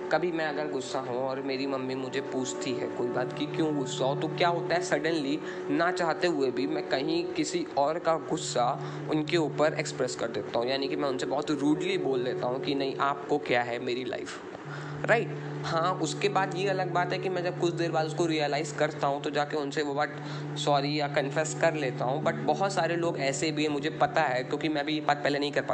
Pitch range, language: 145-185 Hz, Hindi